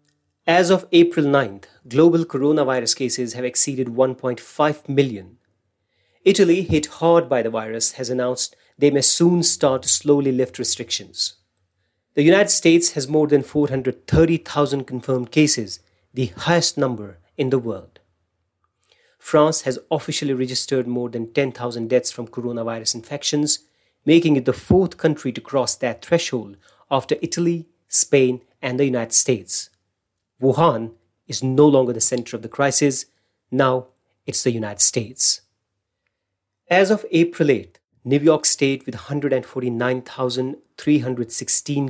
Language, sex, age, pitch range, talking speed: English, male, 30-49, 120-150 Hz, 130 wpm